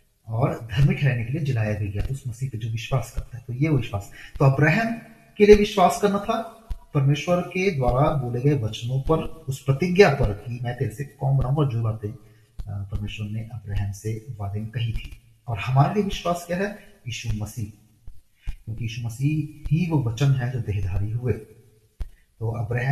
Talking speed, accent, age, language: 155 wpm, native, 30-49, Hindi